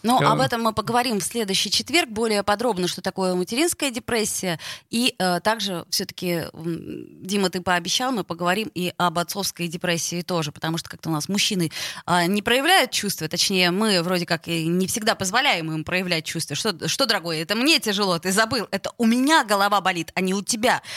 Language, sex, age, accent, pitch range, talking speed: Russian, female, 20-39, native, 175-220 Hz, 190 wpm